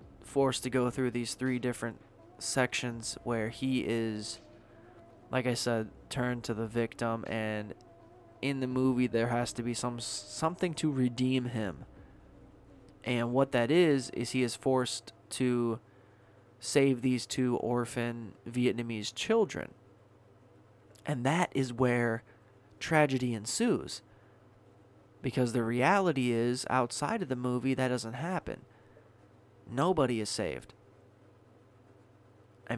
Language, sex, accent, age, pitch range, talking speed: English, male, American, 20-39, 110-125 Hz, 125 wpm